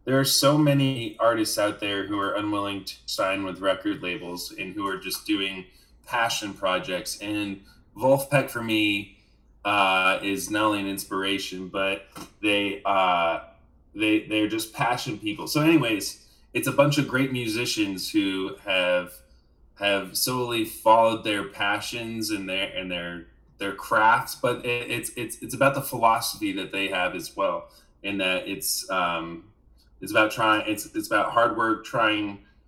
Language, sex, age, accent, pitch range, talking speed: English, male, 20-39, American, 95-125 Hz, 160 wpm